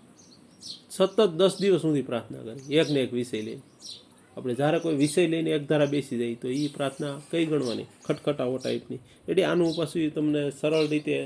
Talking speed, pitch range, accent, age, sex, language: 170 wpm, 145-185 Hz, native, 30-49, male, Gujarati